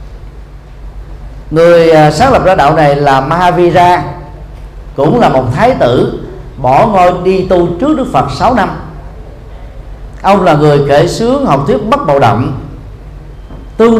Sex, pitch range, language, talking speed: male, 135-180 Hz, Vietnamese, 145 wpm